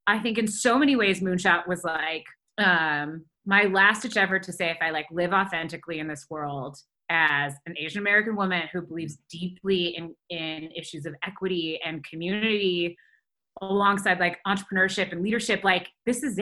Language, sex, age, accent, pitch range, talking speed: English, female, 20-39, American, 175-220 Hz, 170 wpm